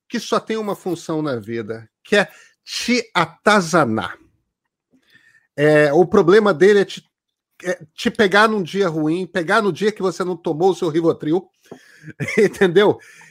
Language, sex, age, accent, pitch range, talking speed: Portuguese, male, 50-69, Brazilian, 170-225 Hz, 145 wpm